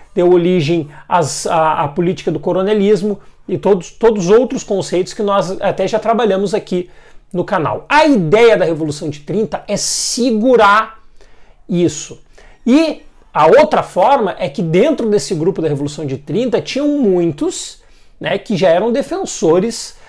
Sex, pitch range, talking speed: male, 175-235 Hz, 145 wpm